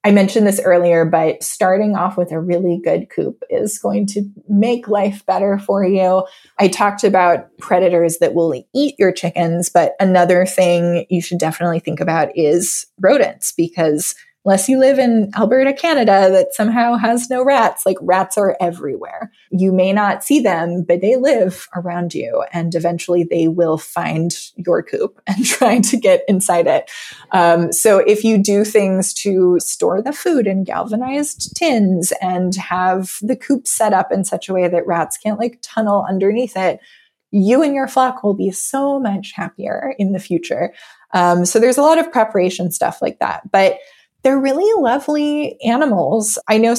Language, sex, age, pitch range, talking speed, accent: English, female, 20-39, 175-240 Hz, 175 wpm, American